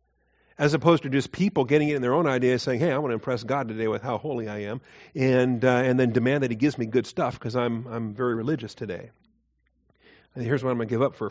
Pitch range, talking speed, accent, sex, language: 115-140 Hz, 265 wpm, American, male, English